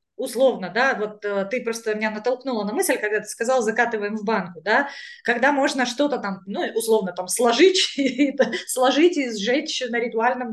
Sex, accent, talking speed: female, native, 165 wpm